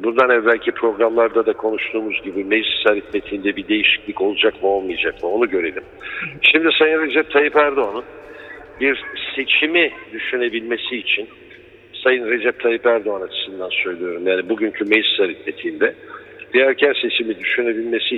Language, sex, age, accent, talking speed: German, male, 60-79, Turkish, 125 wpm